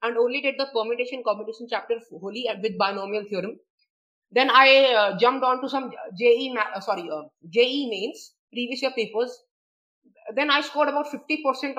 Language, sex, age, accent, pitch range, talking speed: English, female, 20-39, Indian, 220-270 Hz, 175 wpm